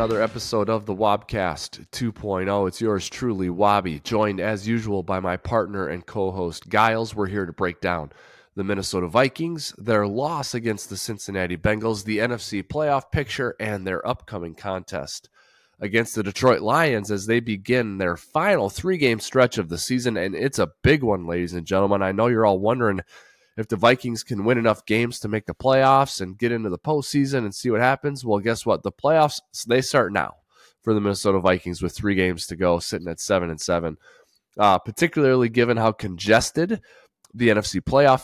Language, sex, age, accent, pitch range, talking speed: English, male, 20-39, American, 95-125 Hz, 190 wpm